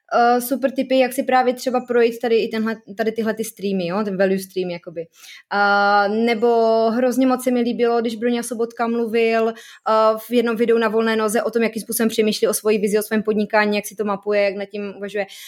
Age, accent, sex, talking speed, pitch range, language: 20-39, native, female, 215 wpm, 220-265 Hz, Czech